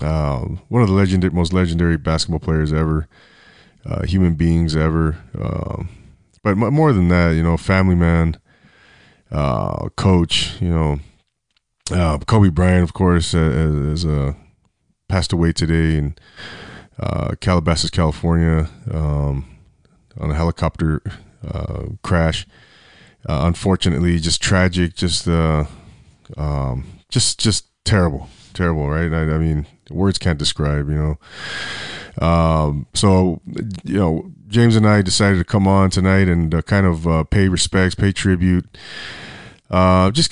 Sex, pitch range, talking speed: male, 80-100 Hz, 135 wpm